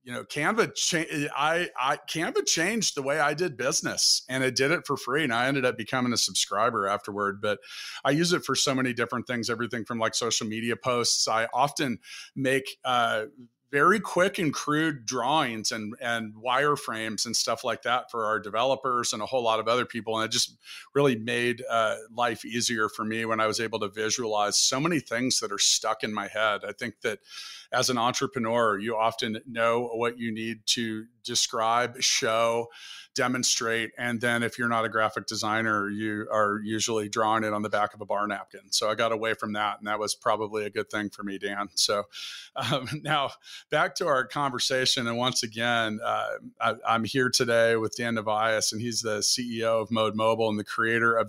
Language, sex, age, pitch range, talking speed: English, male, 40-59, 110-125 Hz, 200 wpm